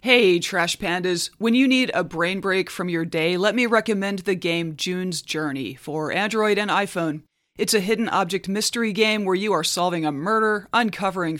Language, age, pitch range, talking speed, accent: English, 30-49, 175-215 Hz, 190 wpm, American